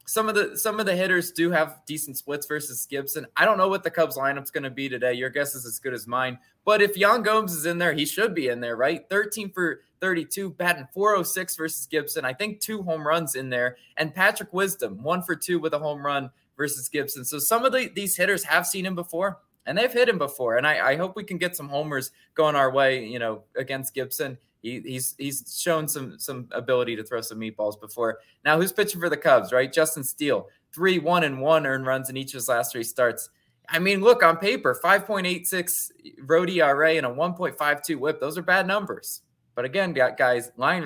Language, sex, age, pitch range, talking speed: English, male, 20-39, 135-180 Hz, 235 wpm